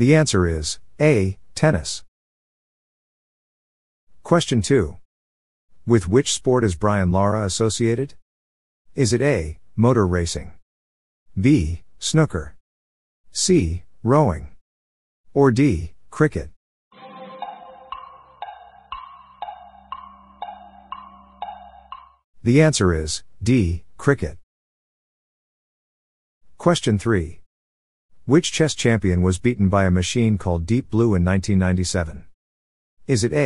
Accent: American